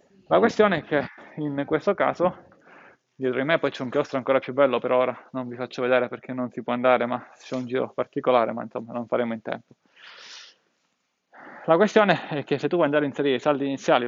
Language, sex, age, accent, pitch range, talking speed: Italian, male, 20-39, native, 130-160 Hz, 220 wpm